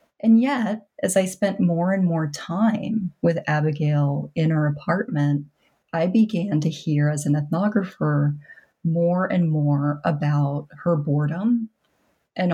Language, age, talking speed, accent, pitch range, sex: English, 30-49, 135 wpm, American, 150-185 Hz, female